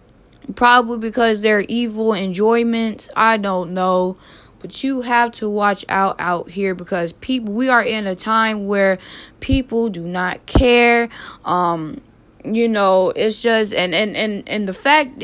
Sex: female